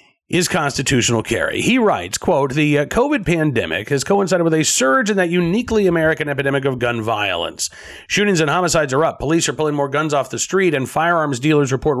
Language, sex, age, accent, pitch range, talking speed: English, male, 40-59, American, 135-180 Hz, 195 wpm